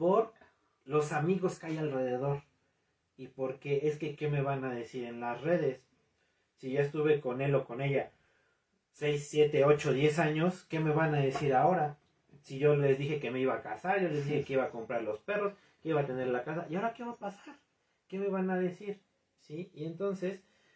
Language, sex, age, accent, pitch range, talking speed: Spanish, male, 30-49, Mexican, 120-160 Hz, 215 wpm